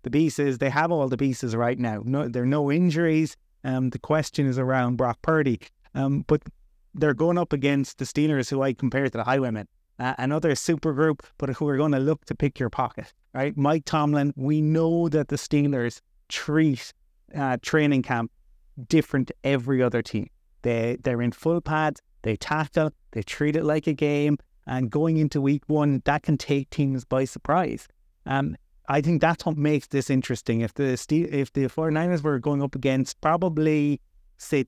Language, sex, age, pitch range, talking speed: English, male, 30-49, 130-150 Hz, 190 wpm